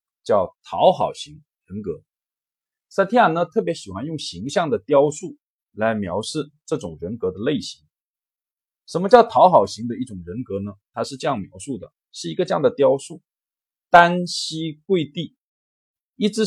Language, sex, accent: Chinese, male, native